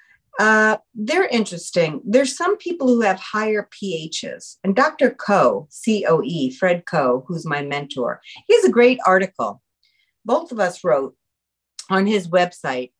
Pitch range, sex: 175-260 Hz, female